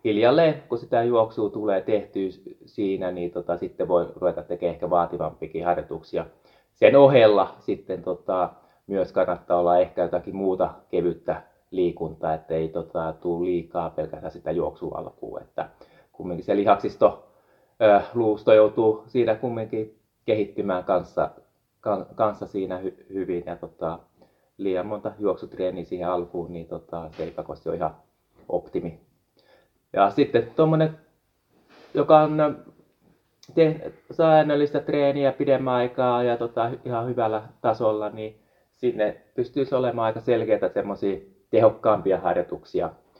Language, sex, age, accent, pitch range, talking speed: Finnish, male, 20-39, native, 90-125 Hz, 125 wpm